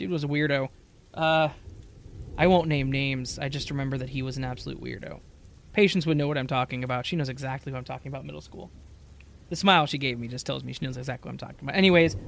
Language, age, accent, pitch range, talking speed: English, 20-39, American, 125-165 Hz, 250 wpm